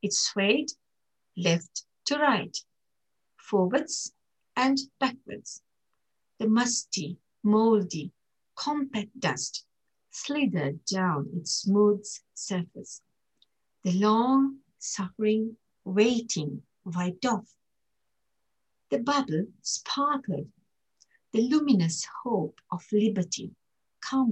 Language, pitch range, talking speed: English, 185-255 Hz, 80 wpm